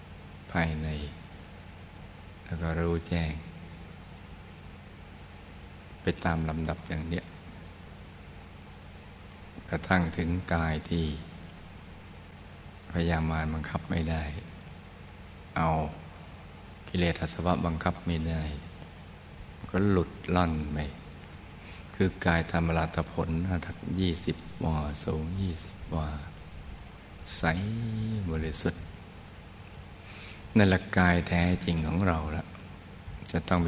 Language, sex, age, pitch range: Thai, male, 60-79, 80-95 Hz